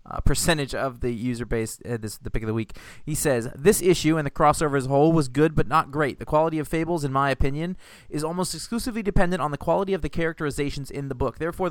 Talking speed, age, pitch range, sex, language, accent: 250 wpm, 20-39, 115-155 Hz, male, English, American